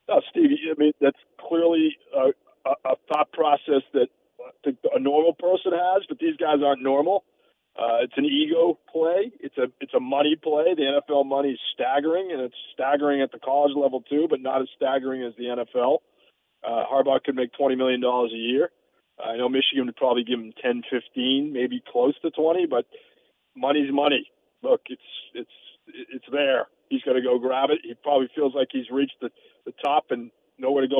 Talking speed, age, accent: 200 wpm, 40-59, American